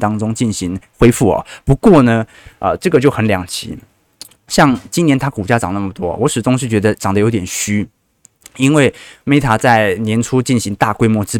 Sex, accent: male, native